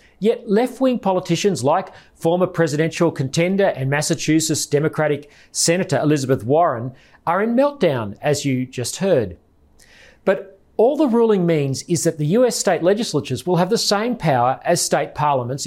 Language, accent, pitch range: English, Australian, 140-200 Hz